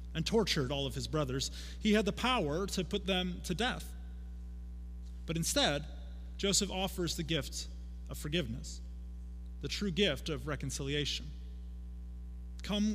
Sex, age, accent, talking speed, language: male, 30-49, American, 135 wpm, English